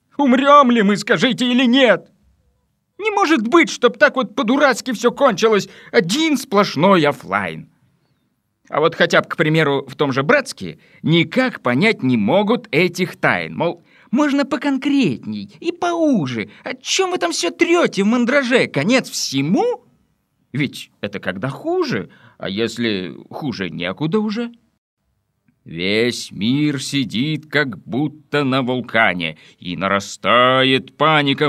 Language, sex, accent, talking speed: Russian, male, native, 130 wpm